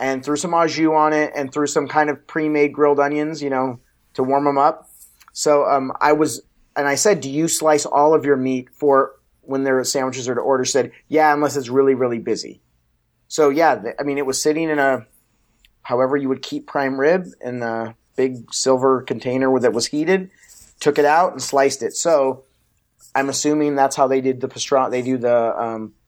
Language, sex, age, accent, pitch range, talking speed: English, male, 30-49, American, 125-150 Hz, 215 wpm